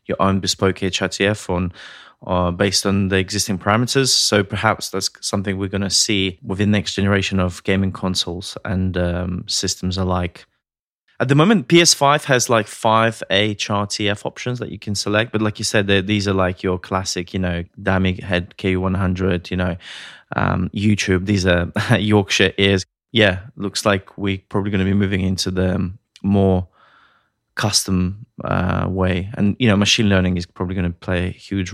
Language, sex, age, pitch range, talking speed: English, male, 20-39, 95-105 Hz, 170 wpm